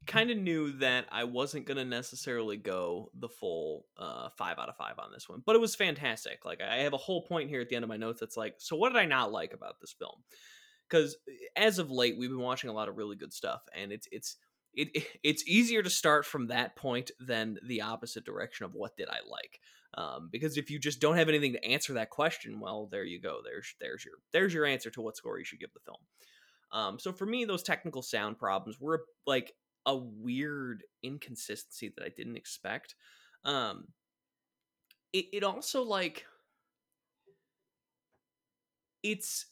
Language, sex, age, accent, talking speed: English, male, 20-39, American, 200 wpm